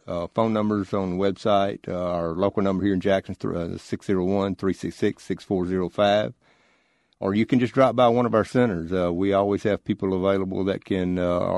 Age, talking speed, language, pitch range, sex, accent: 50-69, 175 wpm, English, 90-100 Hz, male, American